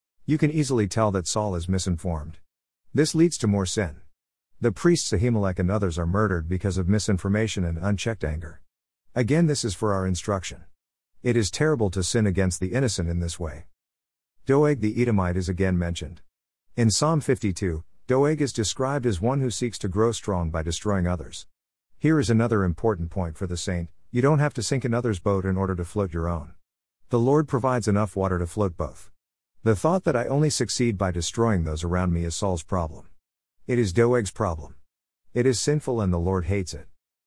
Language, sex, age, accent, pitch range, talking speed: English, male, 50-69, American, 85-115 Hz, 195 wpm